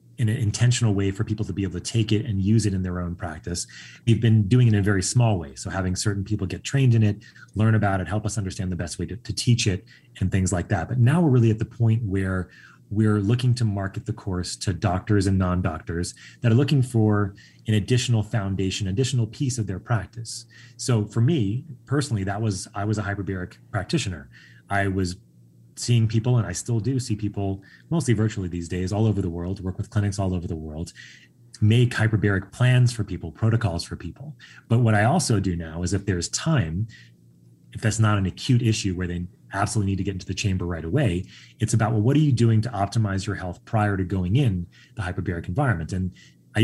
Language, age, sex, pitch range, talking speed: English, 30-49, male, 95-115 Hz, 225 wpm